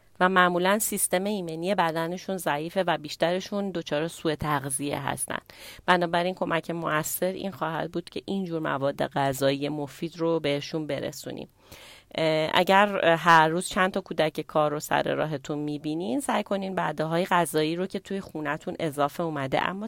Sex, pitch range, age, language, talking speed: female, 155-185 Hz, 30-49, Persian, 145 wpm